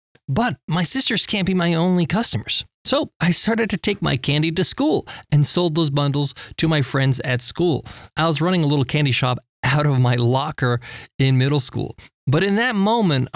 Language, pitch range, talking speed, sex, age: English, 140-185 Hz, 200 wpm, male, 20-39